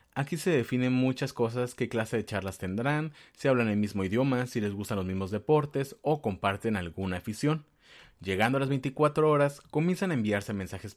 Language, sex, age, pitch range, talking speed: Spanish, male, 30-49, 100-140 Hz, 185 wpm